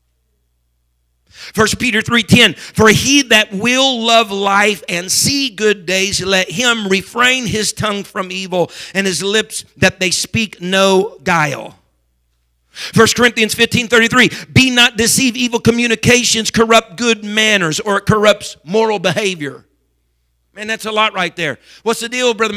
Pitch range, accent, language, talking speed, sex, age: 185-230 Hz, American, English, 145 wpm, male, 50-69